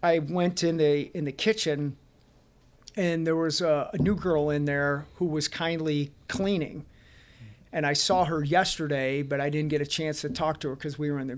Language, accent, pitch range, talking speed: English, American, 145-170 Hz, 210 wpm